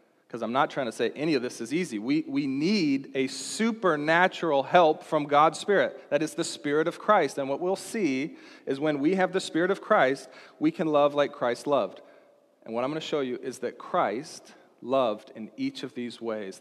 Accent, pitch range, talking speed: American, 125-155 Hz, 215 wpm